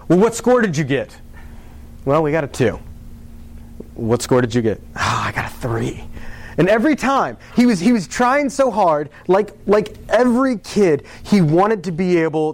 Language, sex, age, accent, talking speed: English, male, 30-49, American, 190 wpm